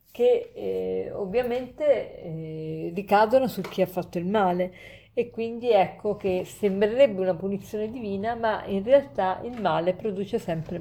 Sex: female